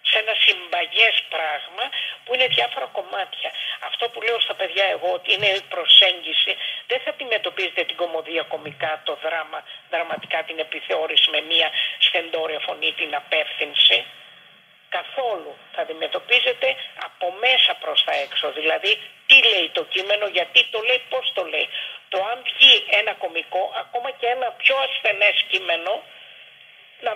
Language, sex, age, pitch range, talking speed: Greek, female, 50-69, 180-275 Hz, 145 wpm